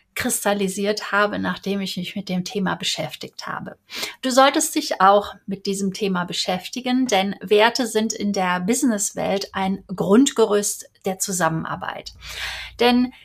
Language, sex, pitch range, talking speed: German, female, 190-230 Hz, 130 wpm